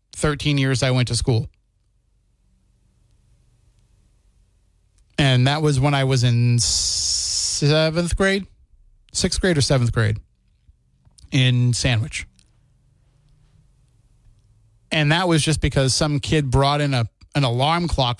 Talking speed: 115 wpm